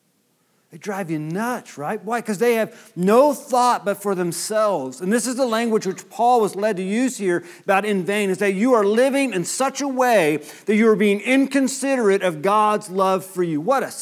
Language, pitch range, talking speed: English, 150-205 Hz, 215 wpm